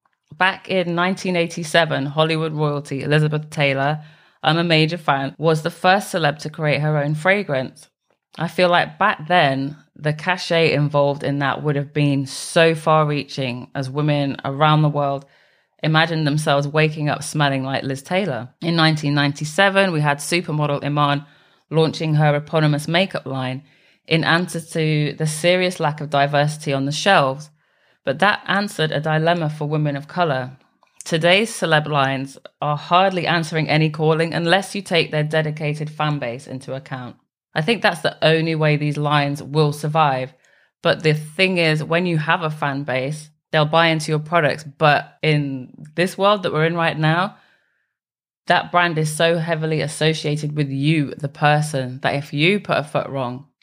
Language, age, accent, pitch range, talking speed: English, 30-49, British, 145-165 Hz, 165 wpm